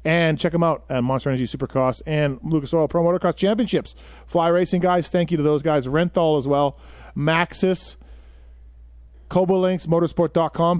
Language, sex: English, male